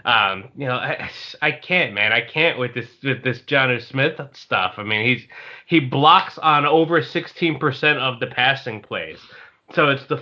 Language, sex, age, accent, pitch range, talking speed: English, male, 20-39, American, 125-165 Hz, 190 wpm